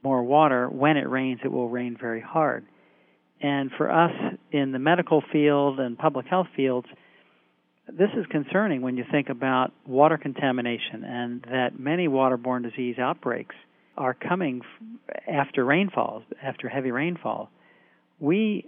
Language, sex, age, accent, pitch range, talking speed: English, male, 50-69, American, 125-155 Hz, 140 wpm